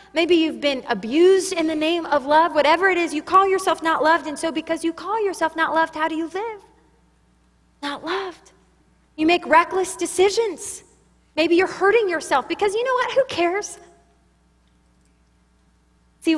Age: 20-39